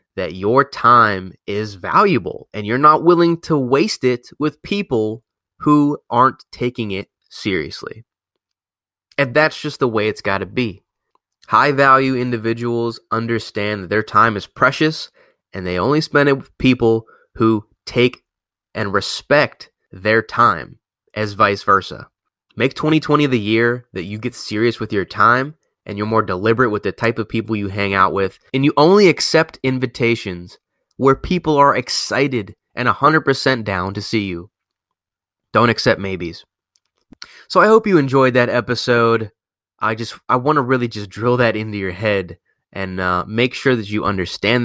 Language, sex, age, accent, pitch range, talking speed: English, male, 20-39, American, 105-135 Hz, 160 wpm